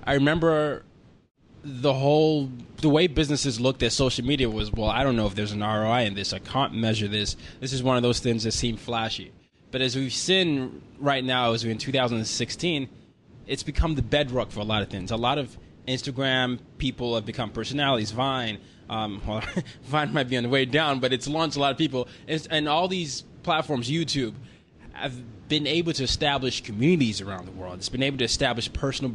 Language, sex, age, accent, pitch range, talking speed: English, male, 20-39, American, 110-135 Hz, 205 wpm